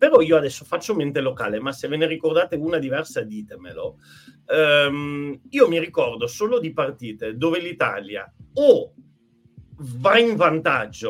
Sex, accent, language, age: male, native, Italian, 40-59